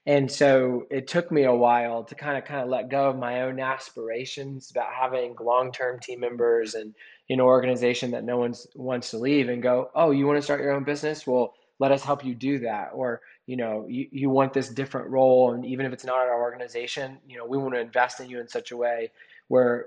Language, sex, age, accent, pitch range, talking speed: English, male, 20-39, American, 120-145 Hz, 245 wpm